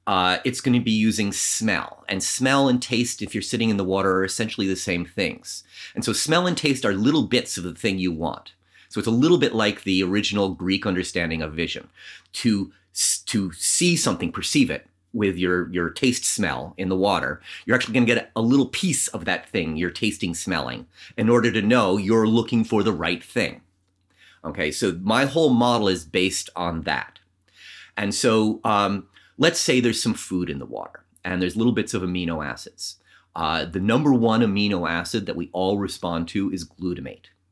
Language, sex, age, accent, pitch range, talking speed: English, male, 30-49, American, 90-115 Hz, 200 wpm